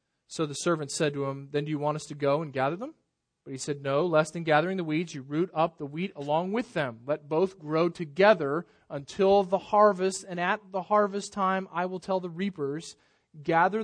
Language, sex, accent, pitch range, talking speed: English, male, American, 145-180 Hz, 220 wpm